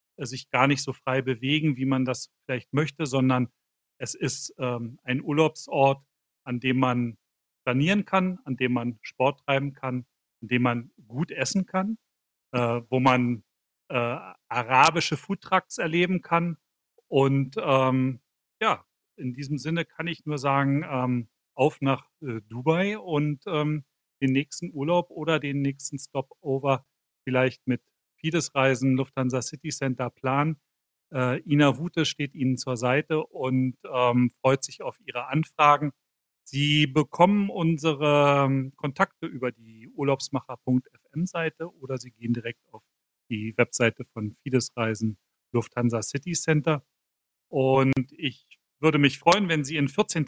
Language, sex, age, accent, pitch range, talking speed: German, male, 40-59, German, 130-155 Hz, 140 wpm